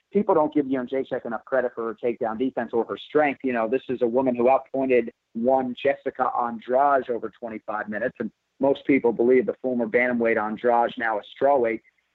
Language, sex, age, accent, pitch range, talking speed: English, male, 40-59, American, 120-140 Hz, 195 wpm